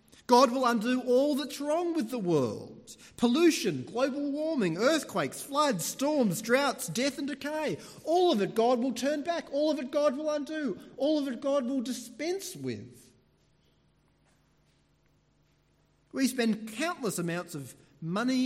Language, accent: English, Australian